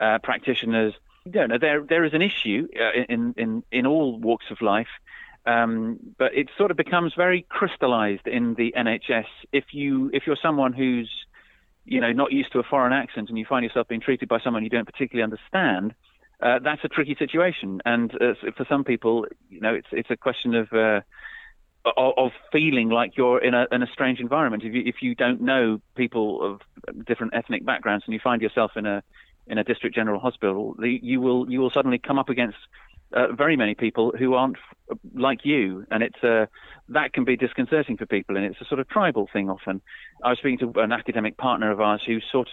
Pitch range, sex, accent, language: 110-130 Hz, male, British, English